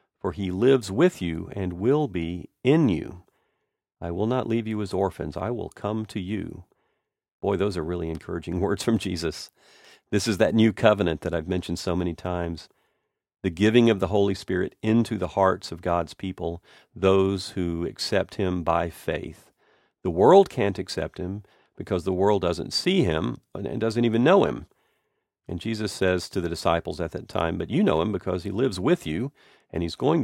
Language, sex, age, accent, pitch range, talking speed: English, male, 50-69, American, 85-110 Hz, 190 wpm